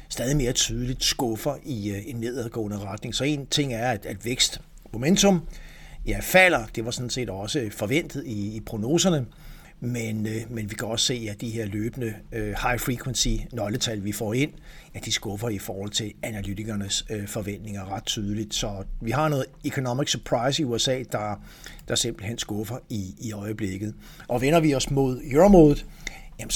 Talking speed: 160 wpm